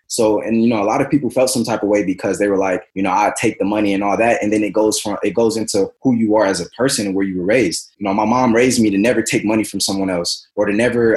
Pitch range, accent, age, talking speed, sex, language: 100-120 Hz, American, 20-39, 330 wpm, male, English